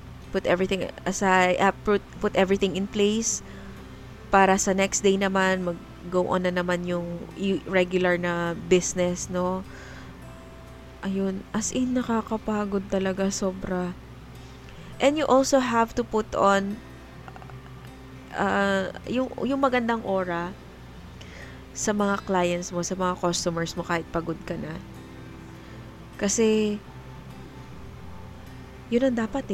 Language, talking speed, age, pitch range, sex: Filipino, 115 wpm, 20-39, 175-220 Hz, female